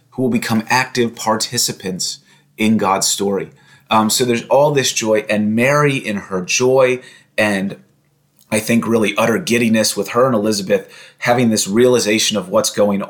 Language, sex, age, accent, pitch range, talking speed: English, male, 30-49, American, 105-125 Hz, 160 wpm